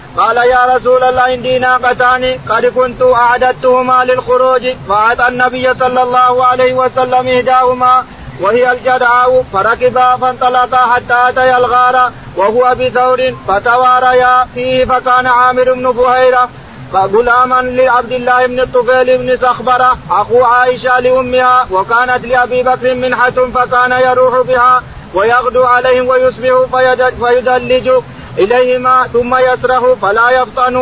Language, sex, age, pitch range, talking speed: Arabic, male, 40-59, 250-255 Hz, 115 wpm